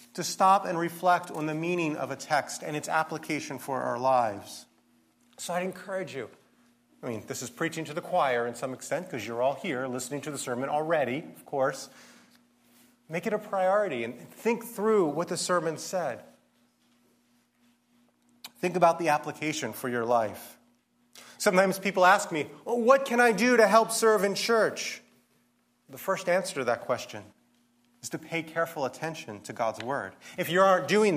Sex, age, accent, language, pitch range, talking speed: male, 30-49, American, English, 130-185 Hz, 175 wpm